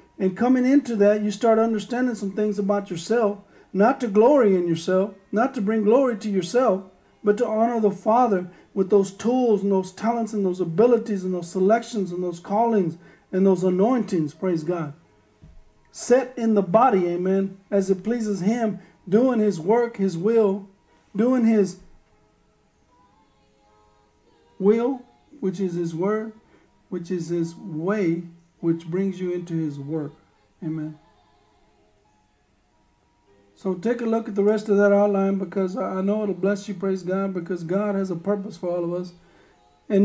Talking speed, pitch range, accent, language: 160 wpm, 180-220 Hz, American, English